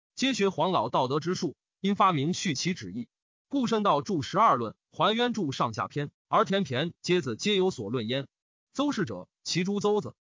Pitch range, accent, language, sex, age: 155-220 Hz, native, Chinese, male, 30-49